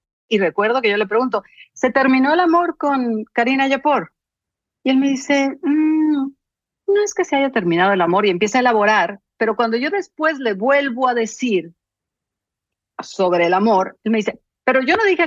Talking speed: 190 wpm